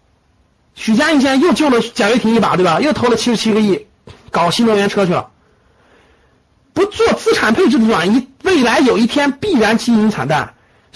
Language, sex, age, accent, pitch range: Chinese, male, 50-69, native, 170-250 Hz